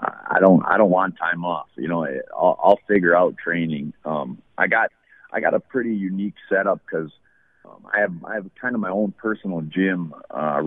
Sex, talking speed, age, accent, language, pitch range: male, 200 wpm, 30-49, American, English, 85-115 Hz